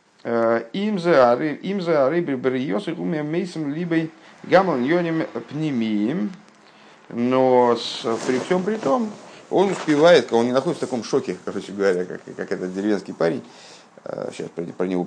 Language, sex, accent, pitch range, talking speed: Russian, male, native, 105-170 Hz, 120 wpm